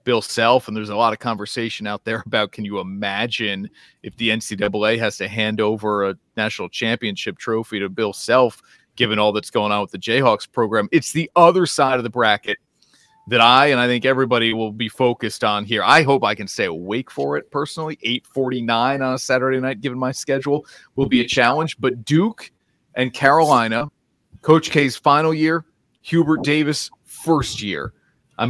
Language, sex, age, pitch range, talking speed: English, male, 30-49, 115-150 Hz, 190 wpm